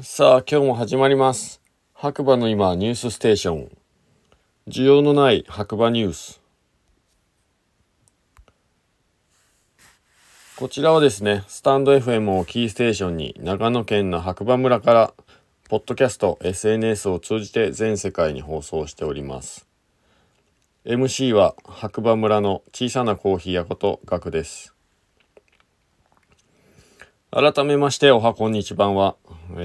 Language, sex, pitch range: Japanese, male, 90-120 Hz